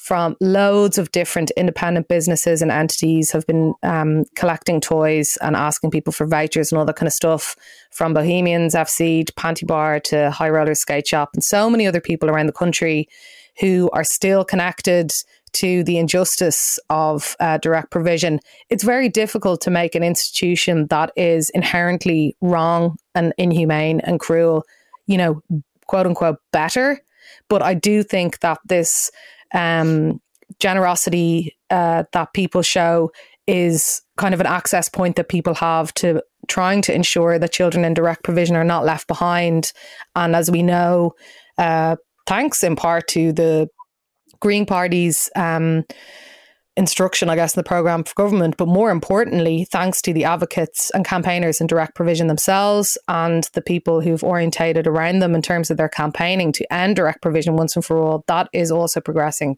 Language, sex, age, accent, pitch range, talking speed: English, female, 20-39, Irish, 160-180 Hz, 165 wpm